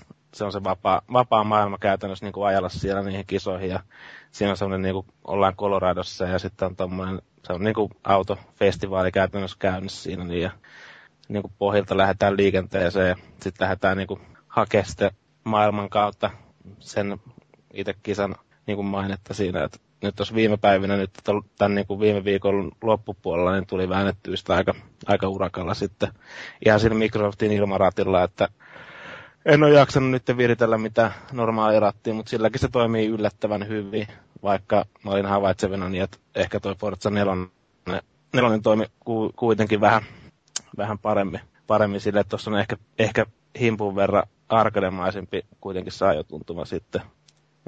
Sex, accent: male, native